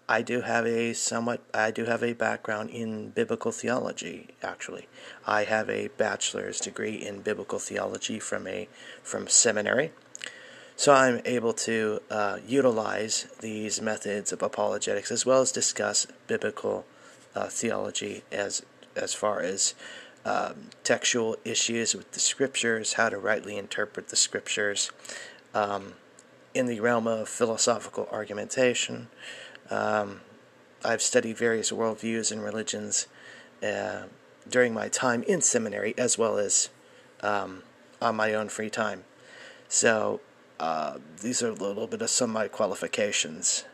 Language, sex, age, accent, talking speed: English, male, 30-49, American, 135 wpm